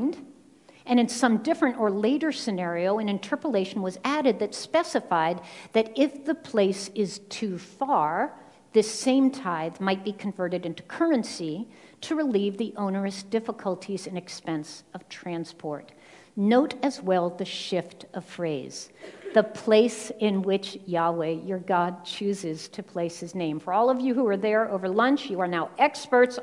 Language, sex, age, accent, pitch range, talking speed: English, female, 50-69, American, 180-250 Hz, 155 wpm